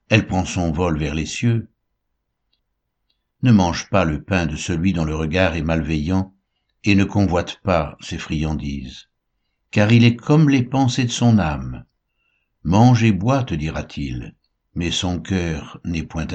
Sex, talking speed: male, 160 wpm